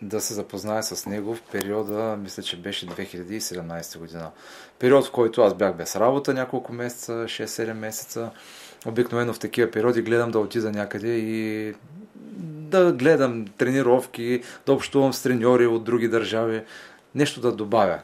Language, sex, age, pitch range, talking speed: Bulgarian, male, 30-49, 100-125 Hz, 150 wpm